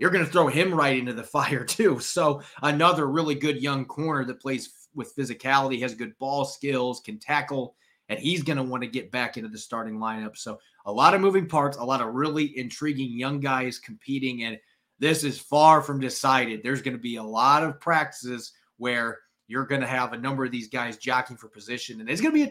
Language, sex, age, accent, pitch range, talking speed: English, male, 30-49, American, 125-150 Hz, 225 wpm